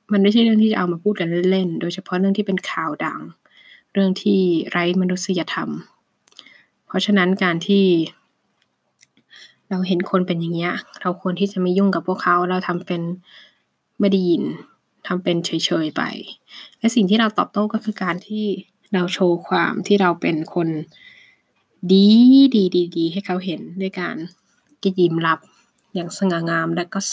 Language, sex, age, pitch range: Thai, female, 20-39, 175-205 Hz